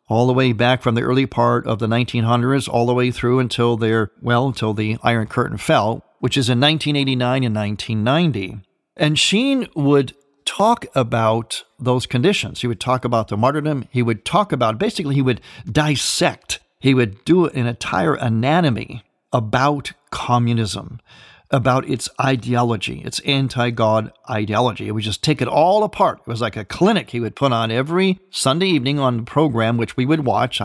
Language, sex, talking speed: English, male, 175 wpm